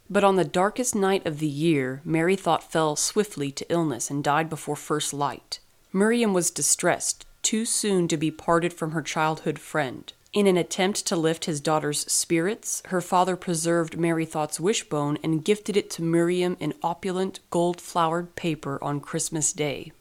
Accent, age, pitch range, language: American, 30-49, 155-185 Hz, English